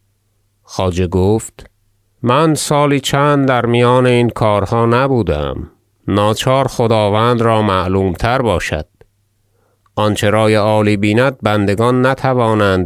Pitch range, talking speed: 95-110 Hz, 105 wpm